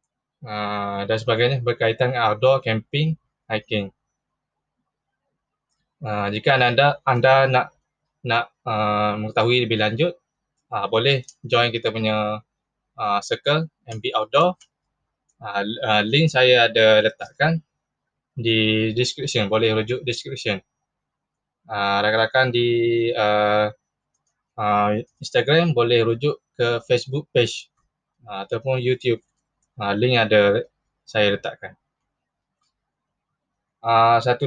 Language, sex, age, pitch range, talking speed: Malay, male, 20-39, 105-135 Hz, 100 wpm